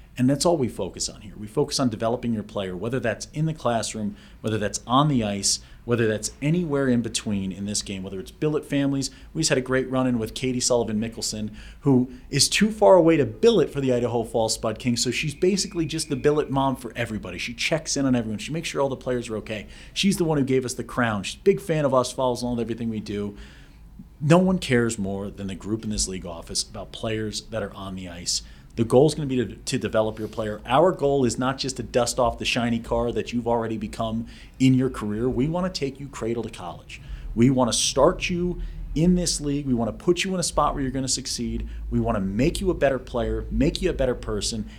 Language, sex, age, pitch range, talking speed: English, male, 40-59, 110-135 Hz, 255 wpm